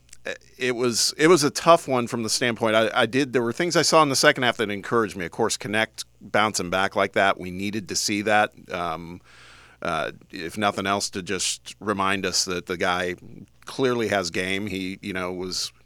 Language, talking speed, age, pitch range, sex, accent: English, 210 wpm, 40-59, 90-115 Hz, male, American